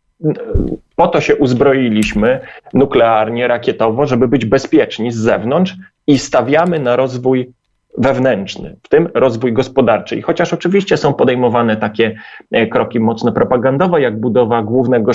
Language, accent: Polish, native